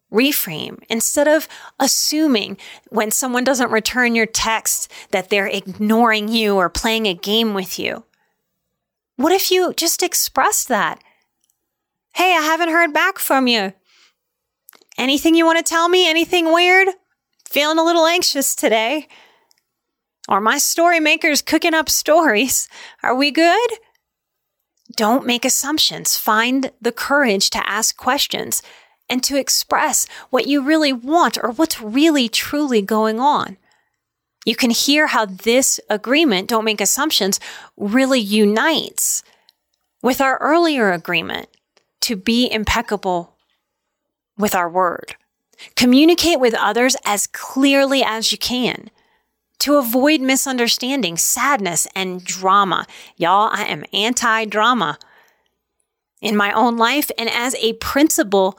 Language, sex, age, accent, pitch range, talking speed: English, female, 30-49, American, 220-310 Hz, 130 wpm